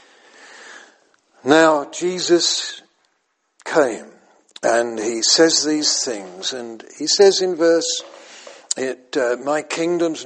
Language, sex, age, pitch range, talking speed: English, male, 60-79, 120-185 Hz, 100 wpm